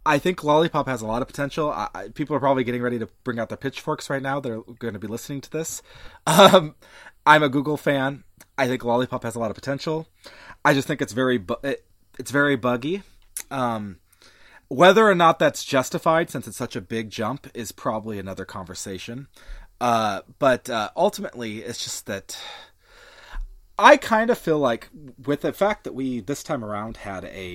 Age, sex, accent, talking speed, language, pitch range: 30-49, male, American, 195 wpm, English, 105-145 Hz